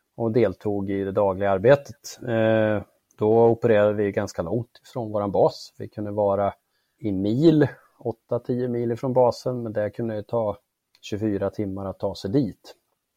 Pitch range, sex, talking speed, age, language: 100-120 Hz, male, 160 wpm, 30-49, Swedish